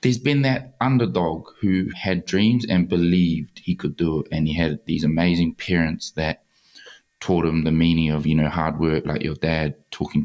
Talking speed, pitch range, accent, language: 195 wpm, 75-85 Hz, Australian, English